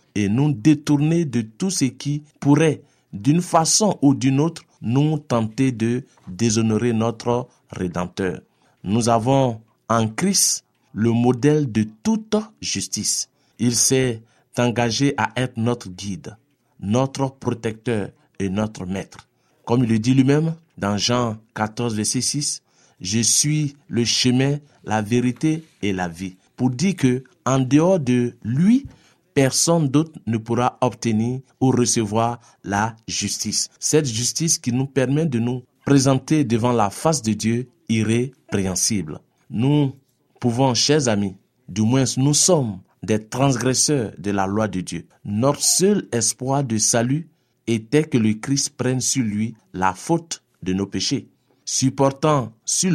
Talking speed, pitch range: 140 wpm, 110-145 Hz